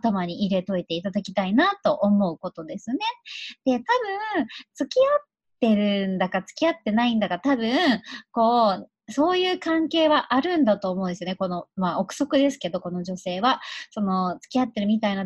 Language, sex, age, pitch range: Japanese, male, 30-49, 200-310 Hz